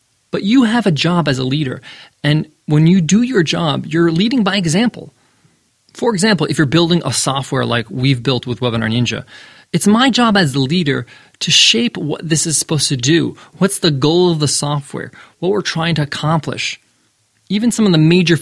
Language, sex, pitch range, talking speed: English, male, 135-195 Hz, 200 wpm